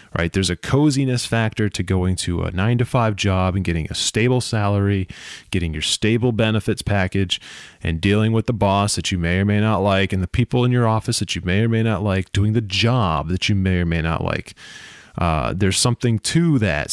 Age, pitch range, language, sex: 20-39, 95-115 Hz, English, male